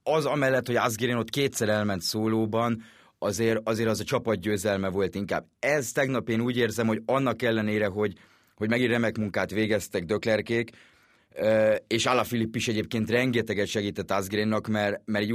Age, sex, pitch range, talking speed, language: 30-49, male, 100-115 Hz, 155 wpm, Hungarian